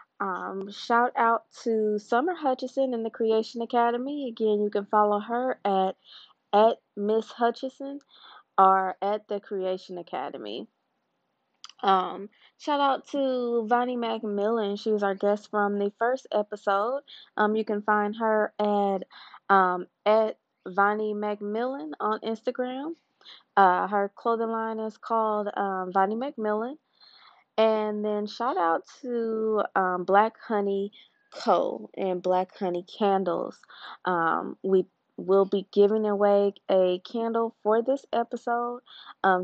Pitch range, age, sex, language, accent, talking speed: 200-240 Hz, 20-39, female, English, American, 130 wpm